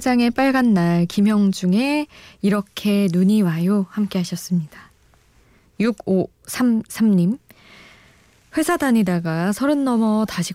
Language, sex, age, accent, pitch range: Korean, female, 20-39, native, 175-225 Hz